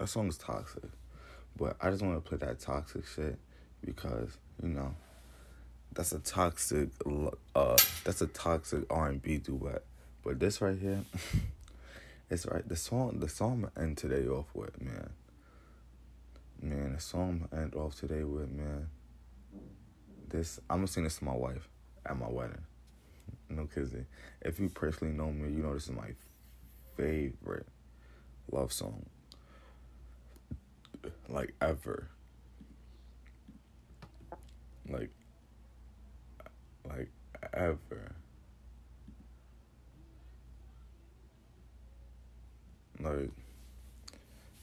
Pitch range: 65-80 Hz